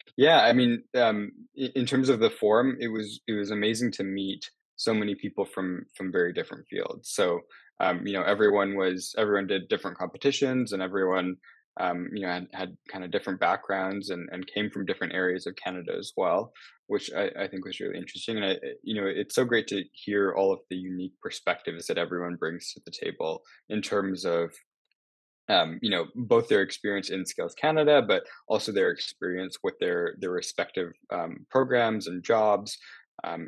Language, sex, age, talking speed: English, male, 20-39, 190 wpm